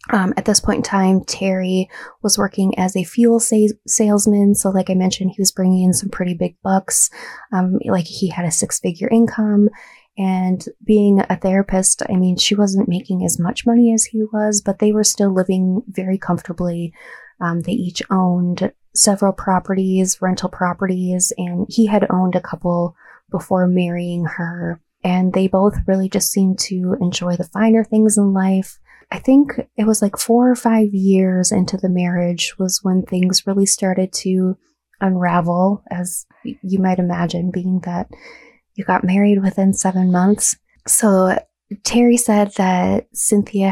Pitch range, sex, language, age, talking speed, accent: 180-205 Hz, female, English, 20-39, 165 wpm, American